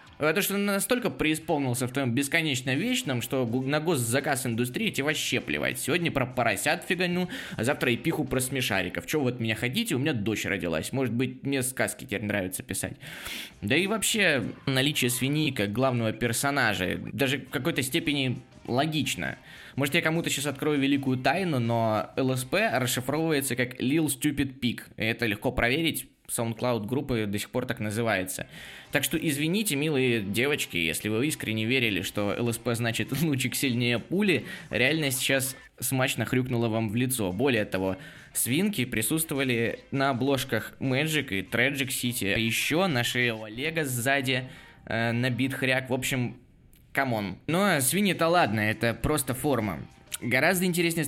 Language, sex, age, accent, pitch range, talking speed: Russian, male, 20-39, native, 115-145 Hz, 150 wpm